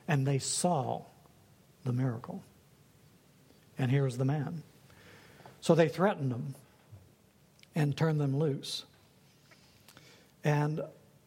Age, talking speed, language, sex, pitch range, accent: 60-79, 100 wpm, English, male, 145-180 Hz, American